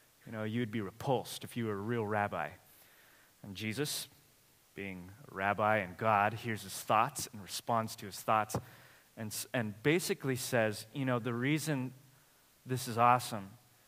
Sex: male